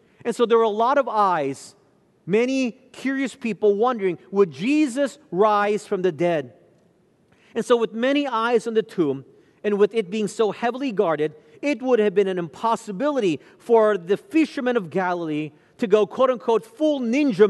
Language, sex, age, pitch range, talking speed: English, male, 40-59, 180-230 Hz, 170 wpm